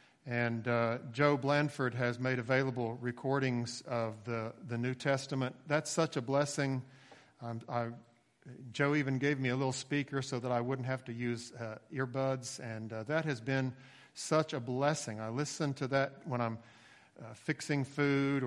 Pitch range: 125-155 Hz